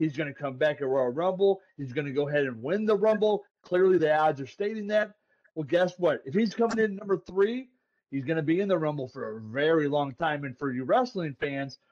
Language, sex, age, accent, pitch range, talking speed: English, male, 30-49, American, 150-200 Hz, 245 wpm